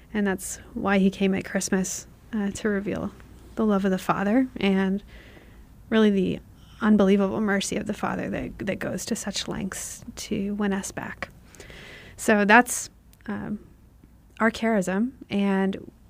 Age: 30-49